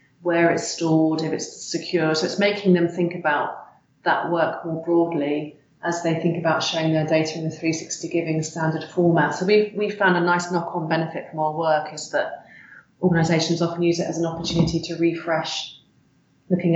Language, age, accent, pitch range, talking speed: English, 30-49, British, 155-170 Hz, 185 wpm